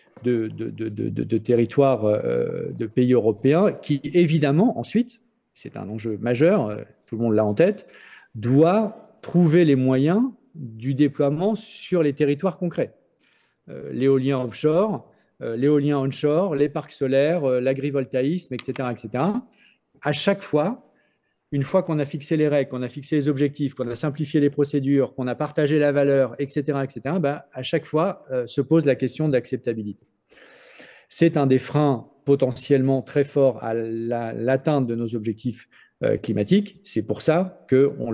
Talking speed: 155 wpm